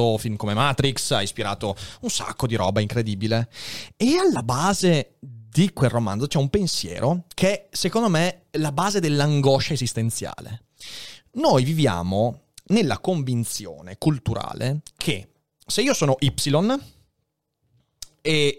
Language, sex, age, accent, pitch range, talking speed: Italian, male, 30-49, native, 115-165 Hz, 125 wpm